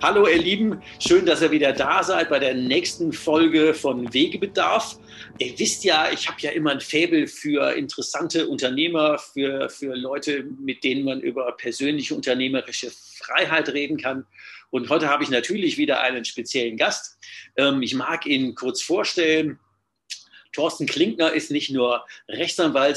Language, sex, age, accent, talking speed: German, male, 50-69, German, 155 wpm